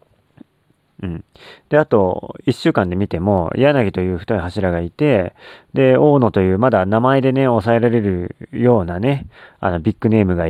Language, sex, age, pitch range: Japanese, male, 40-59, 95-130 Hz